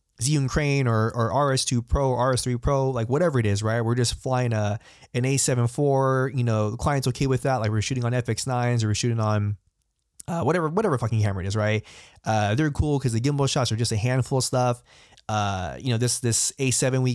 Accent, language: American, English